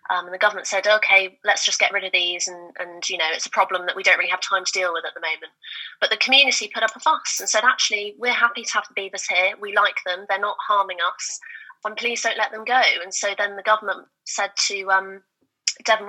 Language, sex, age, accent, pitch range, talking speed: English, female, 20-39, British, 185-215 Hz, 260 wpm